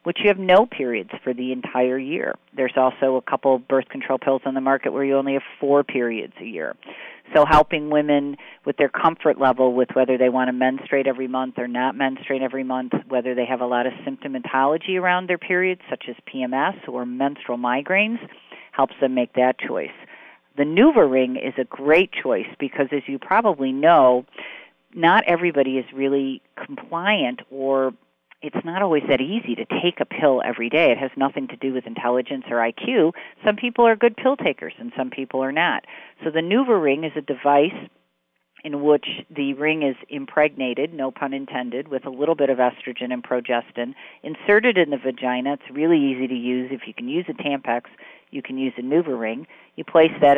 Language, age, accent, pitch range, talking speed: English, 40-59, American, 130-160 Hz, 200 wpm